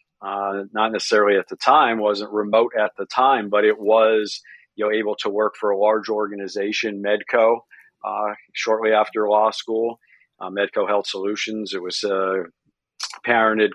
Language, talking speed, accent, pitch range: English, 160 wpm, American, 100-110 Hz